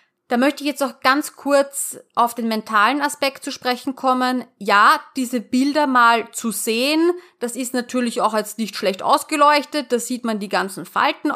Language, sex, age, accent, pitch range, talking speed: German, female, 30-49, German, 210-255 Hz, 180 wpm